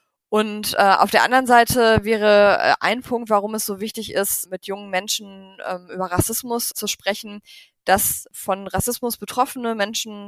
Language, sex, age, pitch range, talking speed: German, female, 20-39, 190-225 Hz, 160 wpm